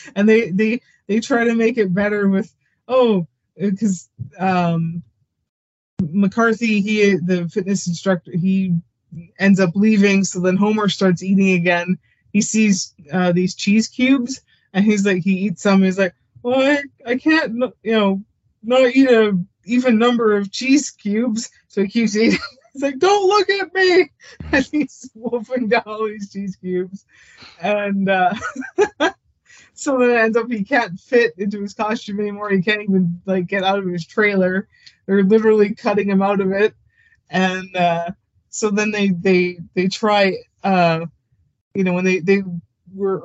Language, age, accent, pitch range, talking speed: English, 20-39, American, 185-225 Hz, 165 wpm